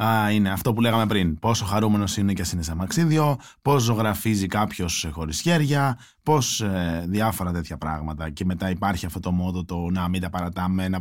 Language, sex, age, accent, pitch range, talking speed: Greek, male, 20-39, native, 95-145 Hz, 195 wpm